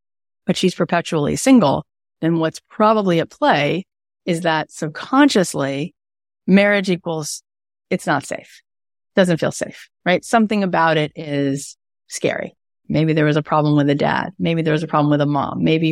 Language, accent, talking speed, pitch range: English, American, 160 wpm, 145-205 Hz